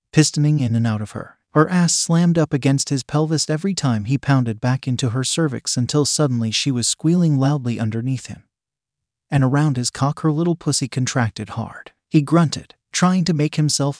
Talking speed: 190 wpm